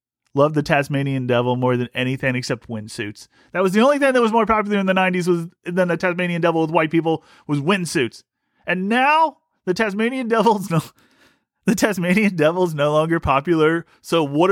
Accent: American